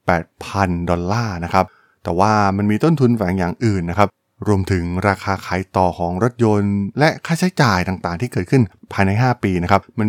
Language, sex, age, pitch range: Thai, male, 20-39, 95-120 Hz